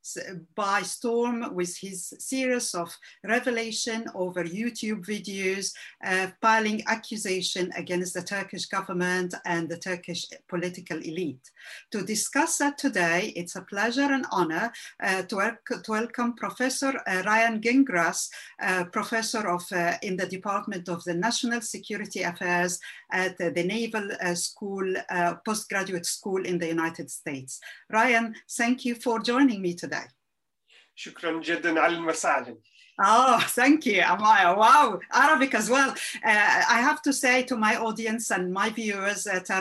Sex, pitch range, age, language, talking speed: female, 185-235 Hz, 50-69, Turkish, 140 wpm